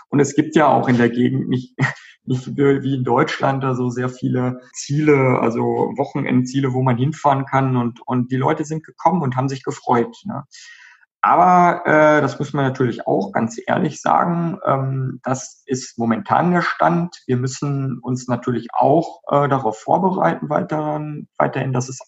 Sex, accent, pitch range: male, German, 120-140 Hz